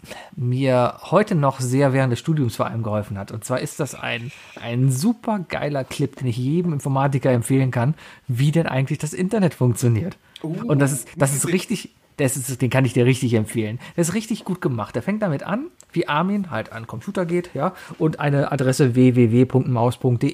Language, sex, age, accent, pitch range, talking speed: German, male, 40-59, German, 125-175 Hz, 200 wpm